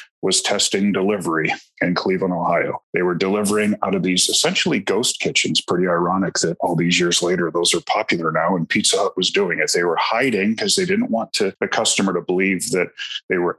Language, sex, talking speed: English, male, 210 wpm